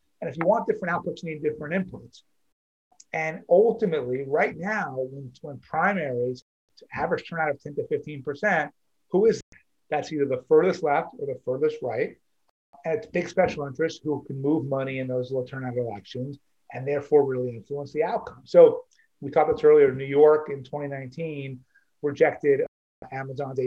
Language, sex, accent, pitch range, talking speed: English, male, American, 140-230 Hz, 170 wpm